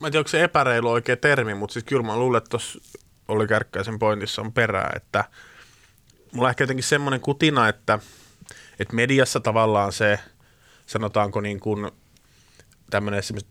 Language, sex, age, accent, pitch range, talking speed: Finnish, male, 30-49, native, 100-125 Hz, 150 wpm